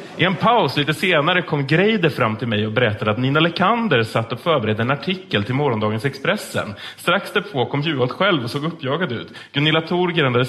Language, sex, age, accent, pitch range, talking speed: Swedish, male, 30-49, Norwegian, 120-170 Hz, 200 wpm